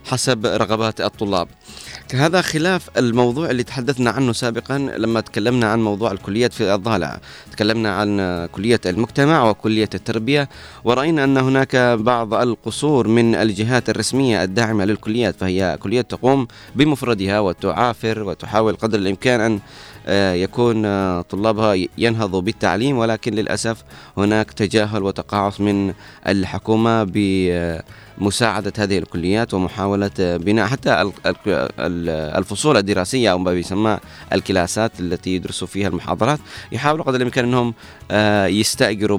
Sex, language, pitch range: male, Arabic, 95-115 Hz